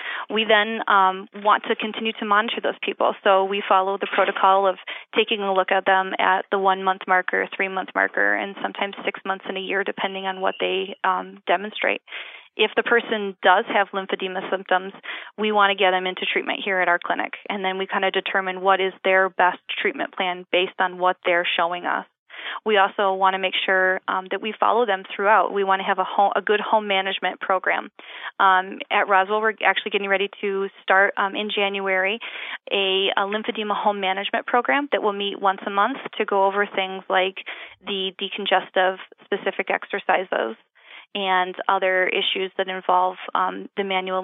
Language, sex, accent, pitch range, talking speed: English, female, American, 190-205 Hz, 190 wpm